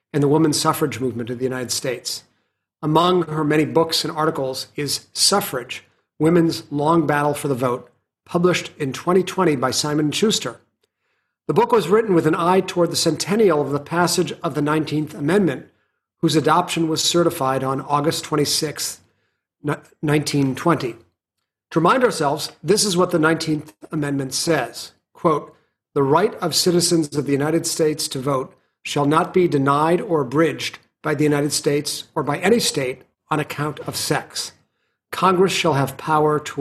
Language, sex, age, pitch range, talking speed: English, male, 40-59, 140-170 Hz, 160 wpm